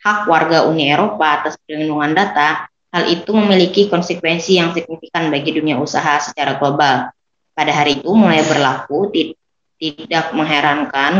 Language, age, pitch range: Indonesian, 20-39, 155-180 Hz